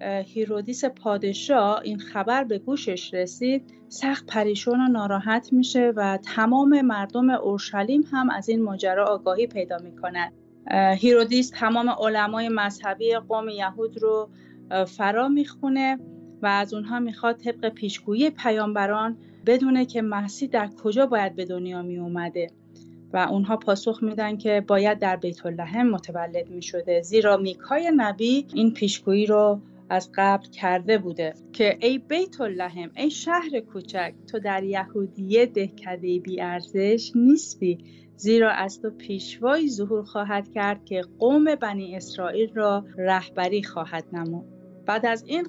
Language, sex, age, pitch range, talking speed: Persian, female, 30-49, 190-240 Hz, 135 wpm